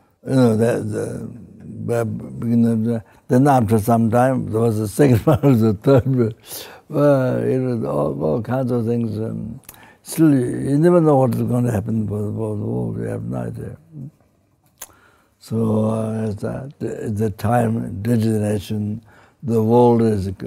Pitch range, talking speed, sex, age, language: 105-125 Hz, 165 wpm, male, 60-79, English